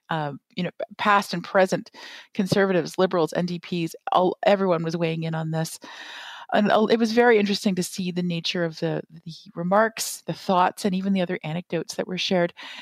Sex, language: female, English